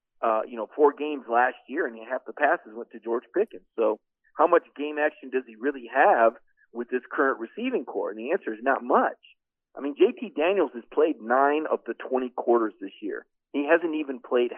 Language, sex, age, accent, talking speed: English, male, 50-69, American, 215 wpm